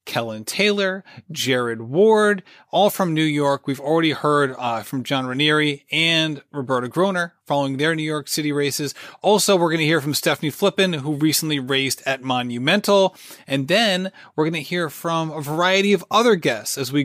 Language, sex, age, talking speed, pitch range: English, male, 30-49, 180 wpm, 145-190 Hz